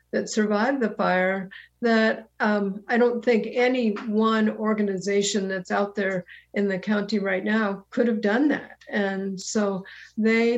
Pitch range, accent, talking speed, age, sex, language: 195-225 Hz, American, 155 wpm, 50-69, female, English